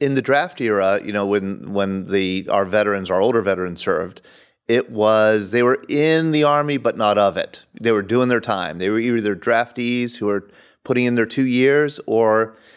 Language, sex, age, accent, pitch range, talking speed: English, male, 30-49, American, 100-130 Hz, 200 wpm